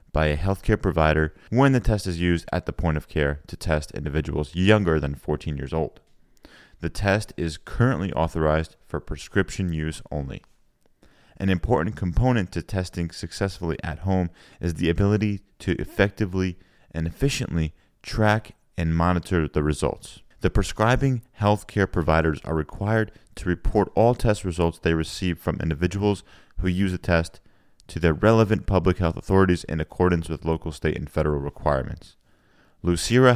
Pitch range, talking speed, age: 80-100 Hz, 155 wpm, 30-49